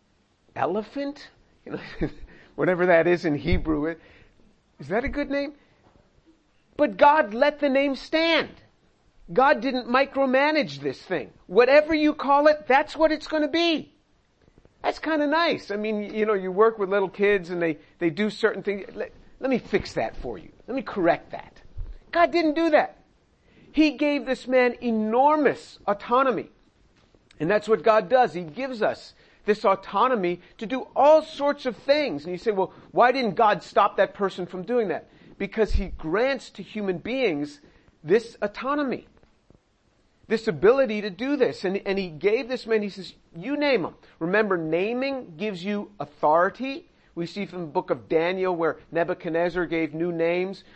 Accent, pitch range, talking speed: American, 175-270 Hz, 170 wpm